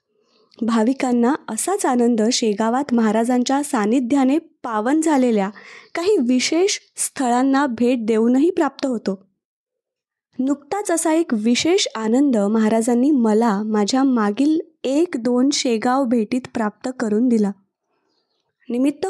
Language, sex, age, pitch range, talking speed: Marathi, female, 20-39, 230-300 Hz, 100 wpm